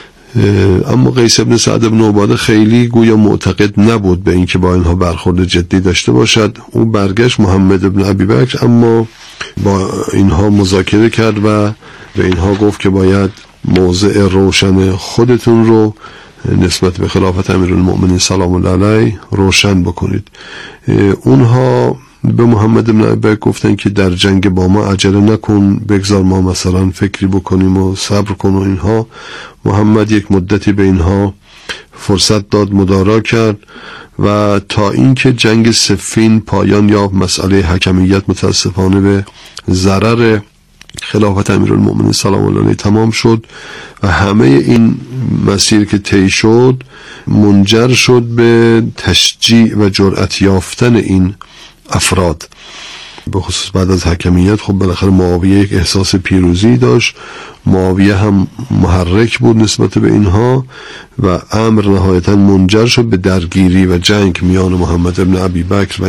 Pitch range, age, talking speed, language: 95-110 Hz, 50-69, 135 wpm, Persian